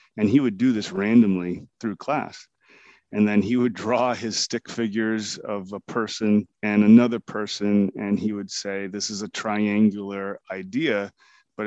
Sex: male